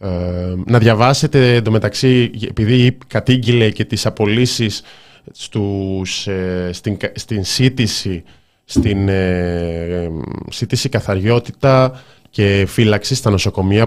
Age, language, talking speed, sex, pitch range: 20-39, Greek, 95 wpm, male, 95-120 Hz